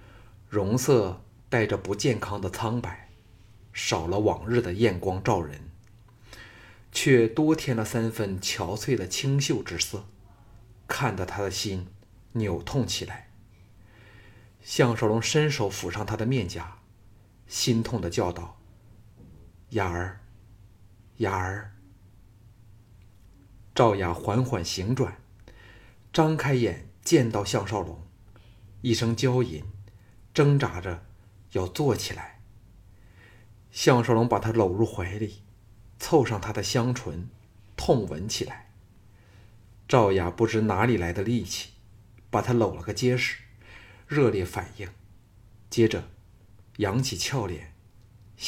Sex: male